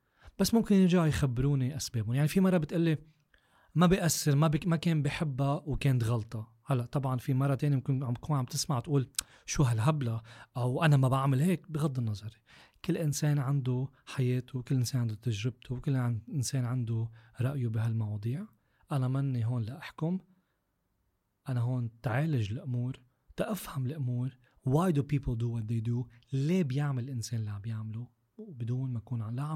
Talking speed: 155 wpm